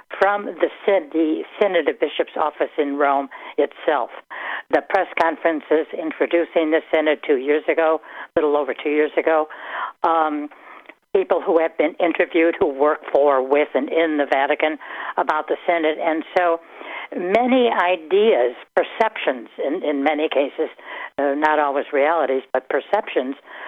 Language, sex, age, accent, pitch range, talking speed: English, female, 60-79, American, 145-175 Hz, 145 wpm